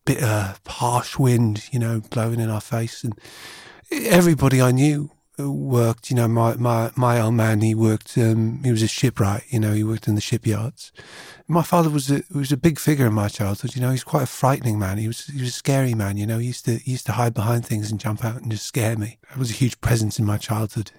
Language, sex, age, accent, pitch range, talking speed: English, male, 30-49, British, 110-135 Hz, 250 wpm